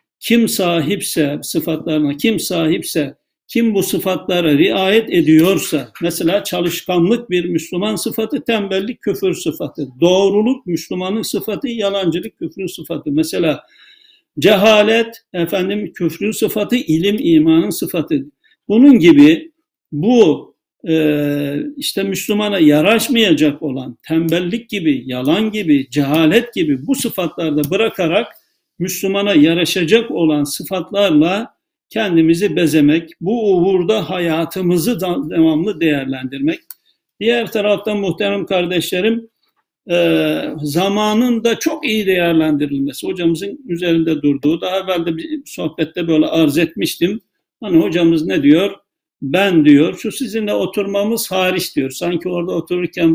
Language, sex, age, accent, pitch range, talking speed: Turkish, male, 60-79, native, 160-225 Hz, 105 wpm